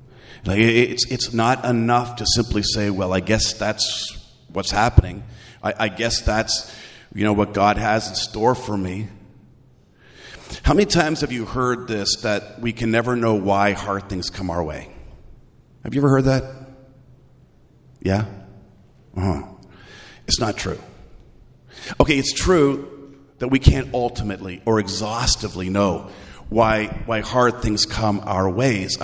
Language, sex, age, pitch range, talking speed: English, male, 40-59, 105-130 Hz, 165 wpm